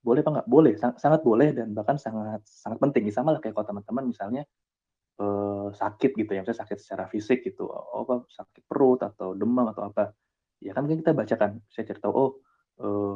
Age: 20-39